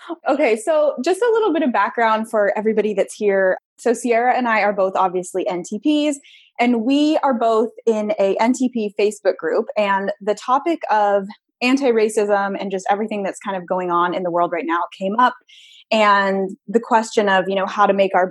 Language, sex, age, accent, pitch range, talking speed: English, female, 20-39, American, 195-245 Hz, 195 wpm